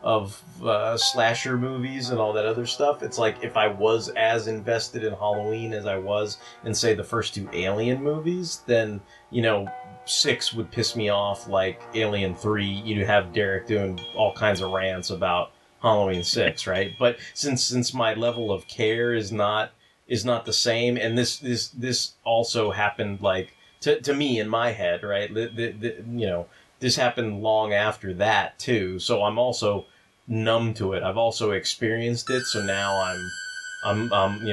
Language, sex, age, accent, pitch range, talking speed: English, male, 30-49, American, 100-120 Hz, 185 wpm